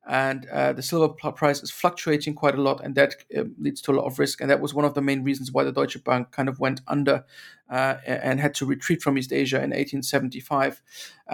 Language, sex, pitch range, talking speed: English, male, 140-150 Hz, 240 wpm